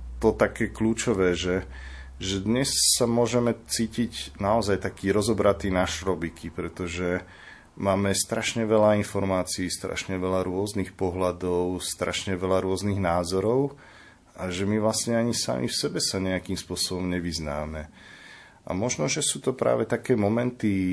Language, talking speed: Slovak, 135 wpm